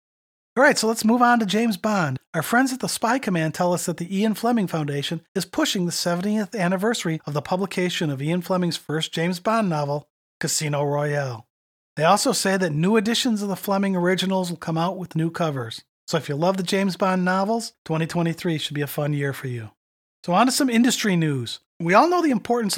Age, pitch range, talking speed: 40-59, 150-195 Hz, 215 wpm